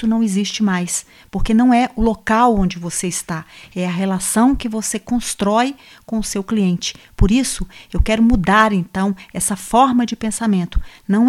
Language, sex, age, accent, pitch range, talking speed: Portuguese, female, 50-69, Brazilian, 185-225 Hz, 170 wpm